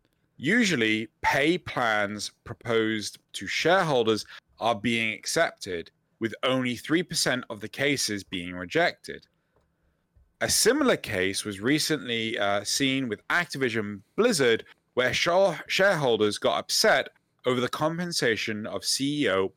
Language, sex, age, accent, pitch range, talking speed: English, male, 30-49, British, 100-135 Hz, 110 wpm